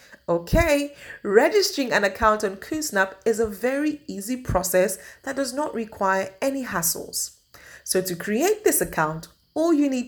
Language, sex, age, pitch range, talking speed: English, female, 30-49, 170-260 Hz, 150 wpm